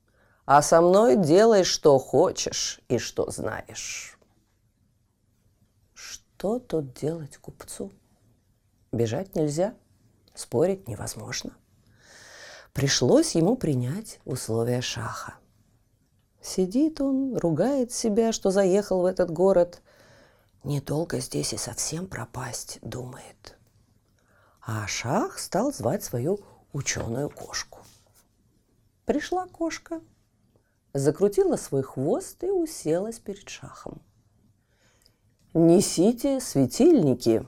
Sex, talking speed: female, 90 wpm